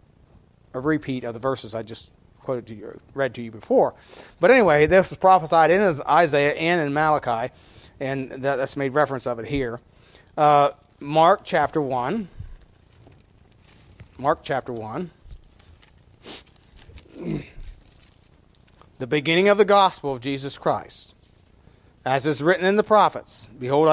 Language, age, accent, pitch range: English, 40-59, American, 120-160 Hz